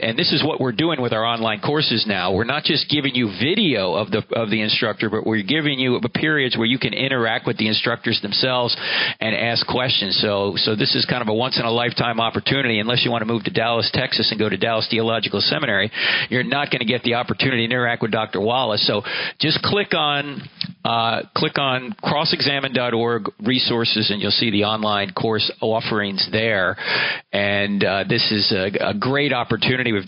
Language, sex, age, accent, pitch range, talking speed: English, male, 50-69, American, 110-135 Hz, 195 wpm